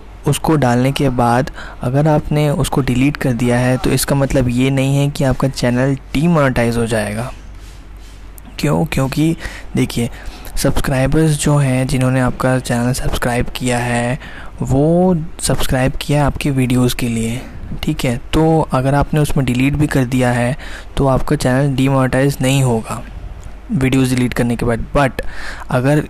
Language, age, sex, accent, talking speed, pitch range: Hindi, 20-39, male, native, 155 wpm, 120-135 Hz